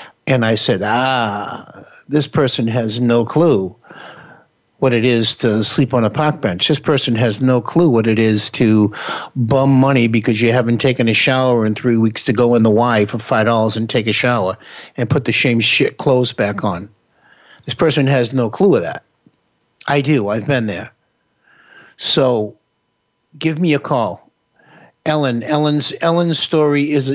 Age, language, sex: 60-79, English, male